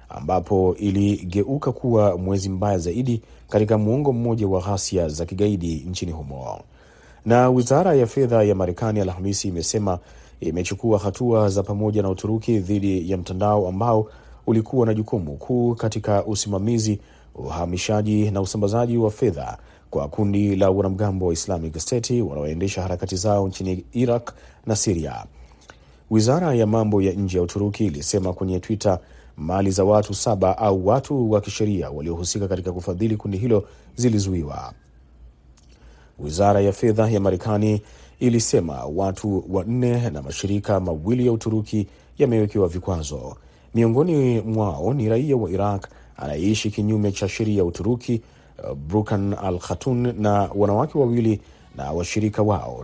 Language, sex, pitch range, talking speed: Swahili, male, 90-110 Hz, 135 wpm